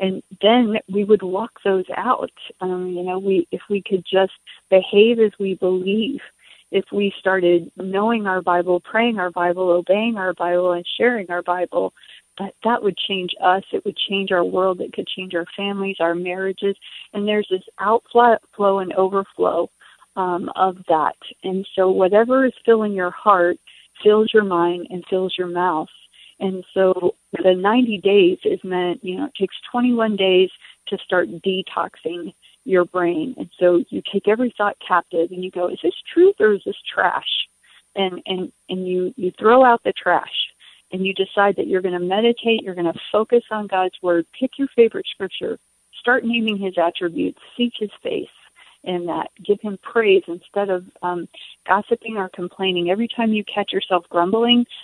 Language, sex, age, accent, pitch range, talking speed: English, female, 30-49, American, 180-215 Hz, 175 wpm